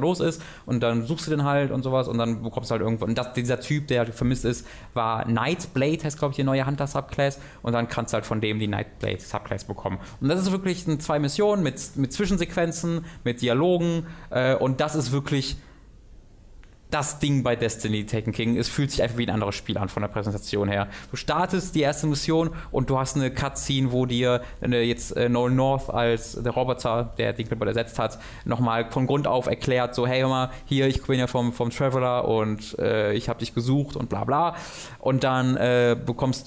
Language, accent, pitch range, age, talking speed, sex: German, German, 115-140 Hz, 20-39, 210 wpm, male